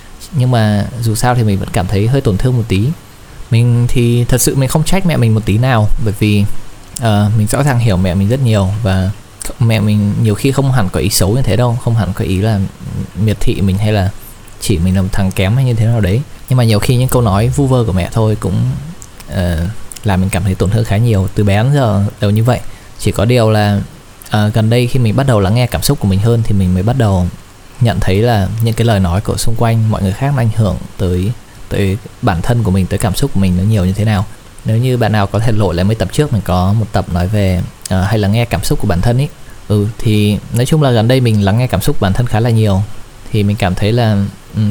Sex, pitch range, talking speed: male, 100-120 Hz, 270 wpm